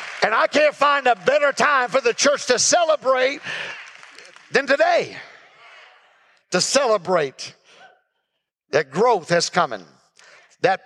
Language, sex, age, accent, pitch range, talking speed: English, male, 50-69, American, 210-290 Hz, 115 wpm